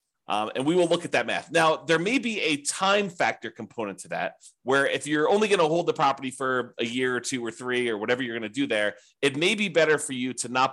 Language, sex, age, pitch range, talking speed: English, male, 30-49, 120-165 Hz, 275 wpm